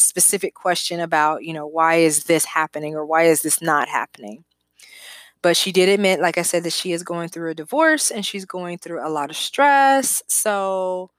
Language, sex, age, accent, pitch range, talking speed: English, female, 20-39, American, 160-185 Hz, 205 wpm